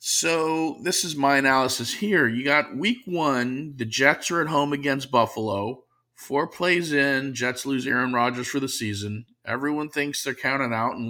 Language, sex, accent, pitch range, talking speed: English, male, American, 110-150 Hz, 180 wpm